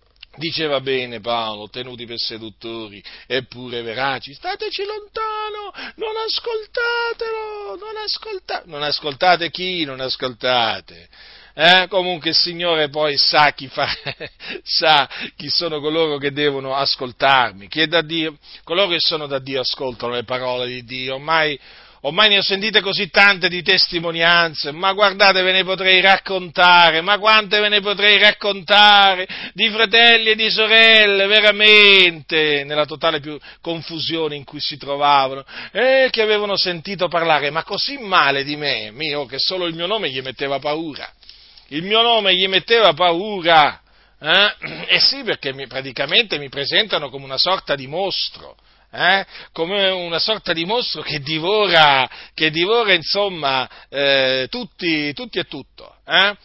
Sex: male